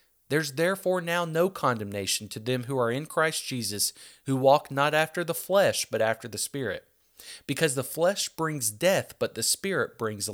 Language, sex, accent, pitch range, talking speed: English, male, American, 125-165 Hz, 180 wpm